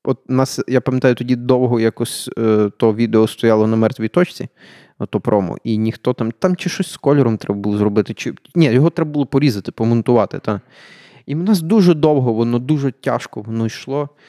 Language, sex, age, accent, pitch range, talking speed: Ukrainian, male, 30-49, native, 125-175 Hz, 195 wpm